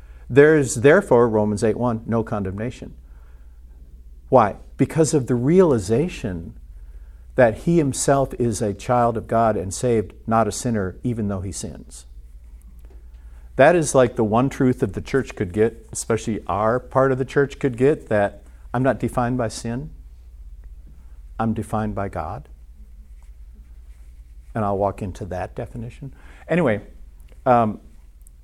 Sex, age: male, 50-69